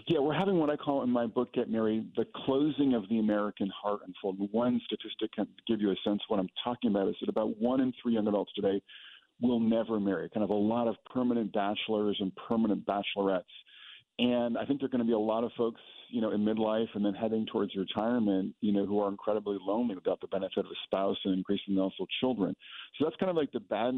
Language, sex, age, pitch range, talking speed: English, male, 50-69, 100-120 Hz, 240 wpm